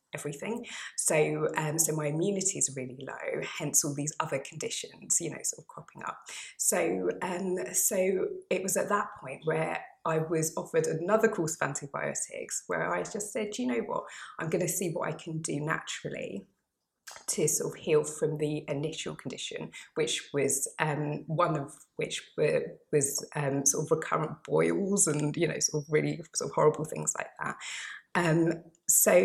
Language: English